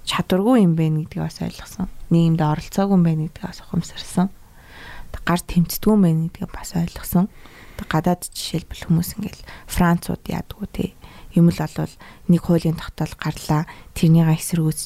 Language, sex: Korean, female